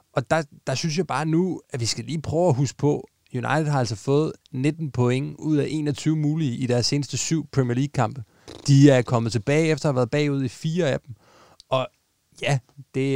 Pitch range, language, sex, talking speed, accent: 125-150 Hz, Danish, male, 215 wpm, native